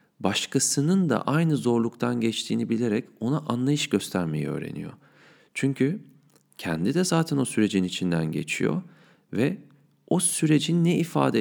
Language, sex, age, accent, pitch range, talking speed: Turkish, male, 40-59, native, 90-145 Hz, 120 wpm